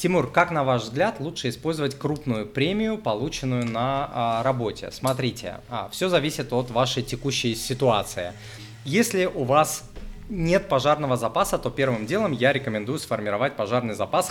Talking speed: 140 wpm